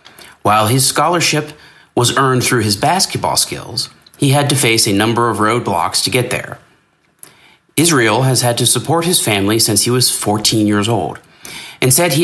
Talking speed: 175 wpm